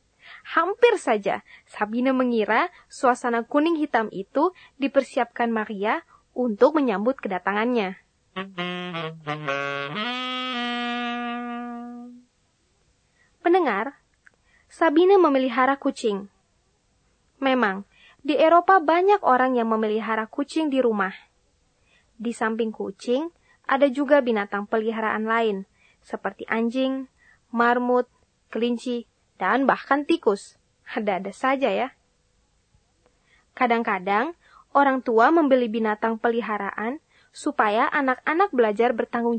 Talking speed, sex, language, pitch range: 80 wpm, female, Indonesian, 220-275 Hz